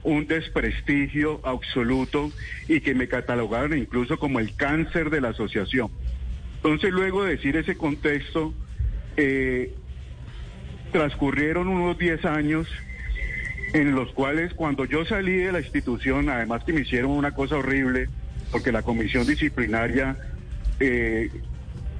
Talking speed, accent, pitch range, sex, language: 125 wpm, Colombian, 125-160 Hz, male, Spanish